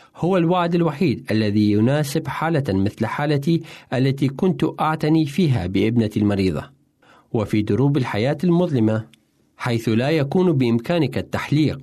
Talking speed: 115 wpm